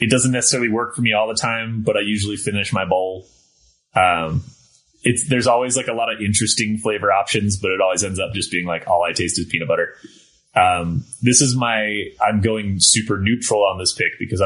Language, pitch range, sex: English, 95-120 Hz, male